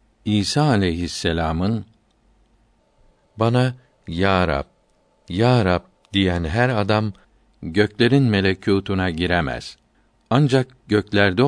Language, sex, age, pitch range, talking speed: Turkish, male, 60-79, 95-115 Hz, 80 wpm